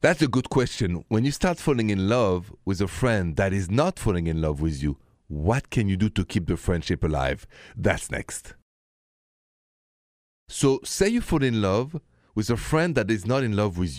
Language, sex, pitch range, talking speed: English, male, 90-130 Hz, 200 wpm